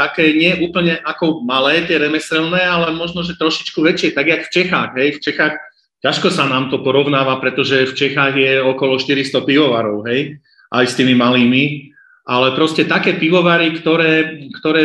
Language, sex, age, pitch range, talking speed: Slovak, male, 40-59, 130-155 Hz, 170 wpm